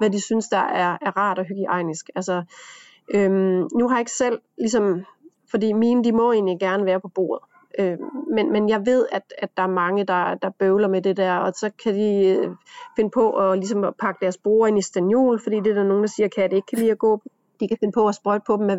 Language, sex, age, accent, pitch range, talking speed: Danish, female, 30-49, native, 200-230 Hz, 255 wpm